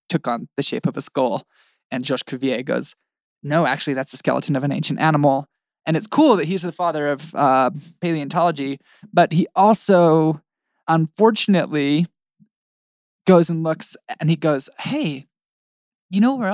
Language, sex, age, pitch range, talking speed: English, male, 20-39, 140-185 Hz, 160 wpm